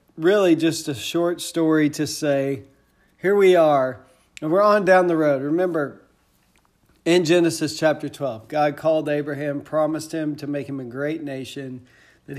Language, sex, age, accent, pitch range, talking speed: English, male, 40-59, American, 145-180 Hz, 160 wpm